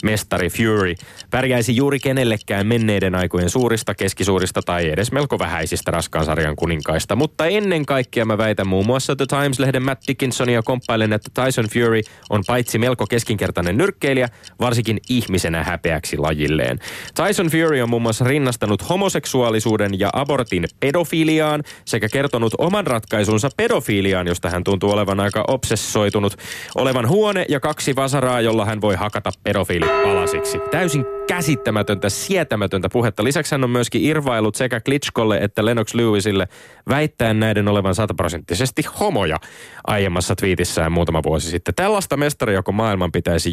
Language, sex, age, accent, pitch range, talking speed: Finnish, male, 20-39, native, 95-125 Hz, 135 wpm